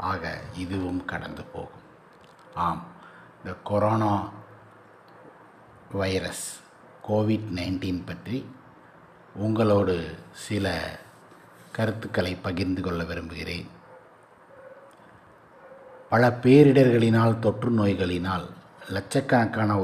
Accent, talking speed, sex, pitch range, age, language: native, 65 wpm, male, 90-110 Hz, 60-79, Tamil